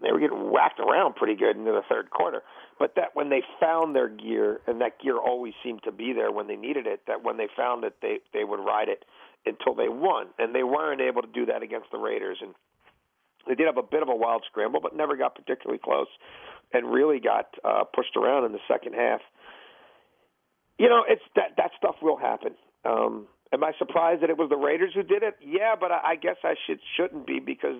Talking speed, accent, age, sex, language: 235 wpm, American, 50-69, male, English